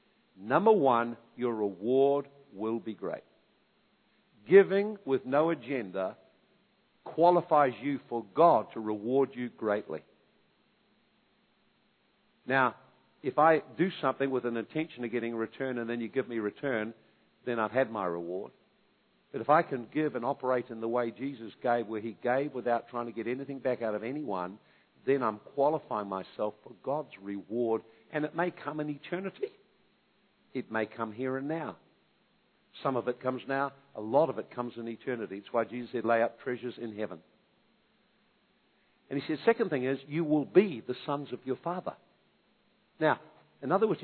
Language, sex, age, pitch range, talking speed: English, male, 50-69, 115-165 Hz, 170 wpm